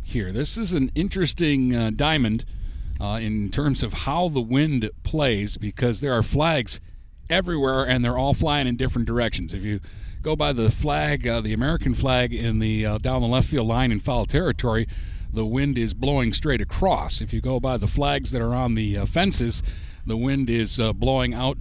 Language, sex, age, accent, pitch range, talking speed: English, male, 60-79, American, 105-140 Hz, 200 wpm